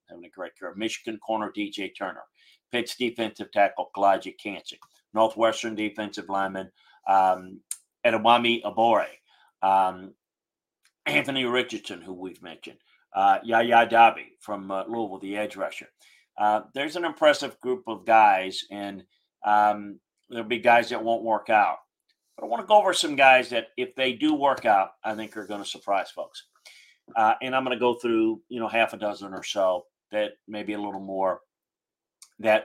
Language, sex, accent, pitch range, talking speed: English, male, American, 100-115 Hz, 165 wpm